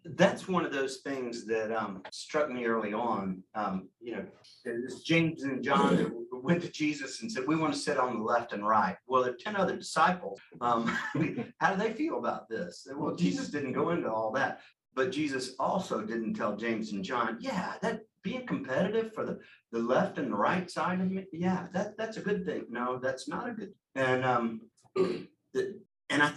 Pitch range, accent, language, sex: 125-180 Hz, American, English, male